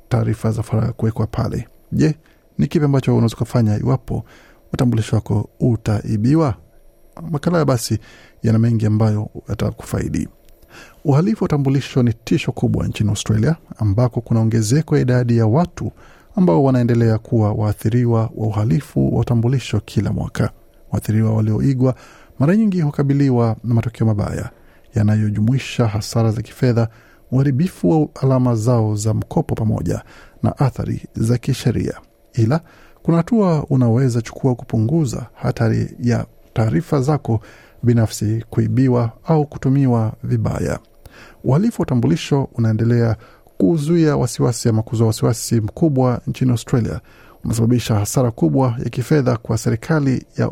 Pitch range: 110-135 Hz